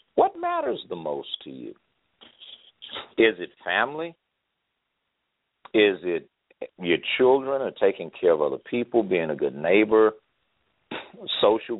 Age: 50-69